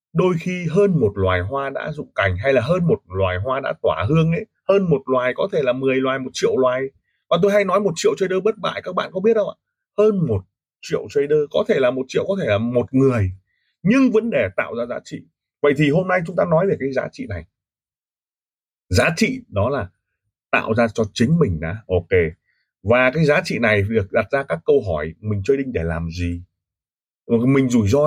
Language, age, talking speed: Vietnamese, 20-39, 235 wpm